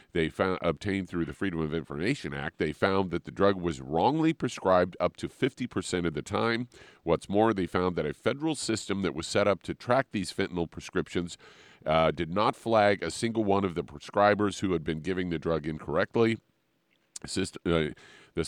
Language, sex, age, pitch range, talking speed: English, male, 40-59, 85-105 Hz, 185 wpm